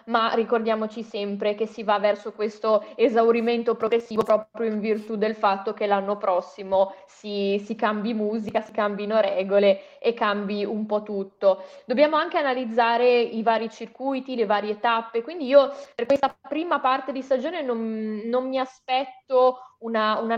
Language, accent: Italian, native